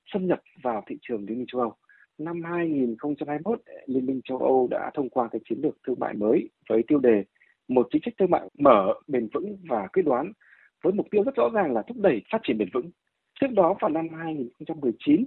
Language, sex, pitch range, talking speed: Vietnamese, male, 155-230 Hz, 220 wpm